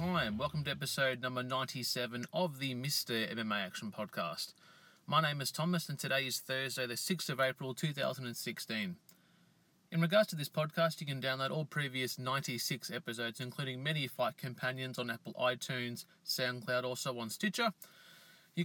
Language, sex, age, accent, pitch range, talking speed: English, male, 30-49, Australian, 125-160 Hz, 165 wpm